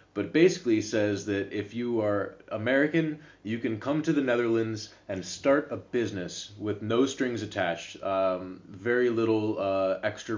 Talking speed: 155 wpm